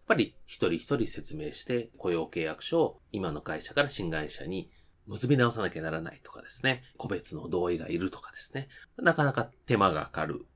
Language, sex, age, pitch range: Japanese, male, 30-49, 105-145 Hz